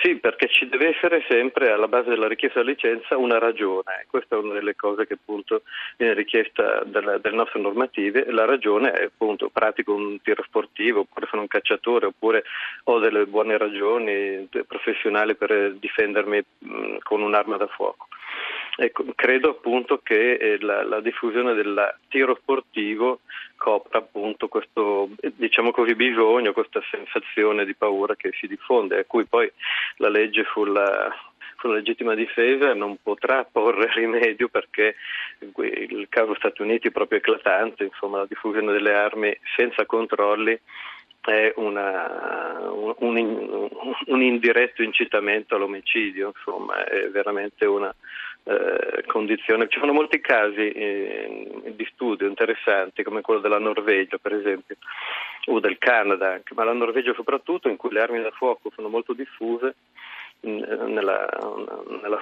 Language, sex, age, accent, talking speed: Italian, male, 40-59, native, 140 wpm